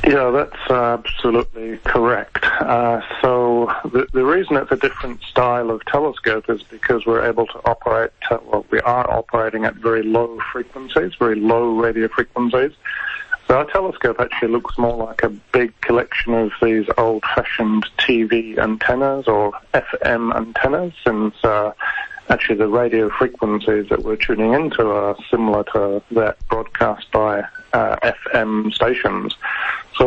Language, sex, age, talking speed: English, male, 40-59, 145 wpm